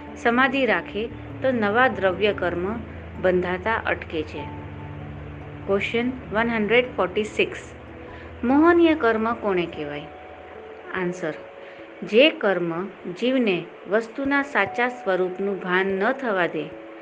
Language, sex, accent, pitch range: Gujarati, female, native, 175-235 Hz